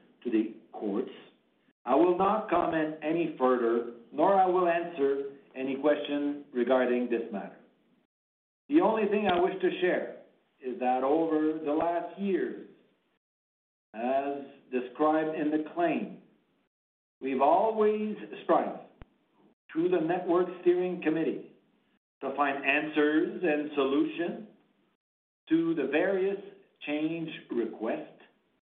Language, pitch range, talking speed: English, 130-185 Hz, 115 wpm